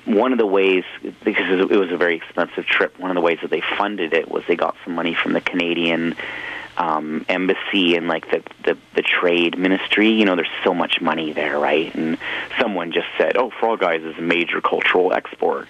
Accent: American